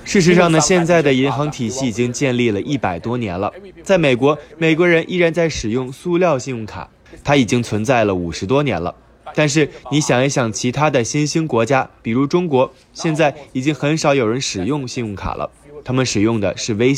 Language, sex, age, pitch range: Chinese, male, 20-39, 115-160 Hz